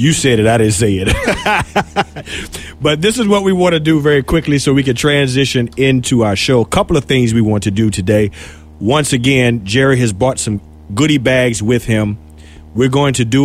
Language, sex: English, male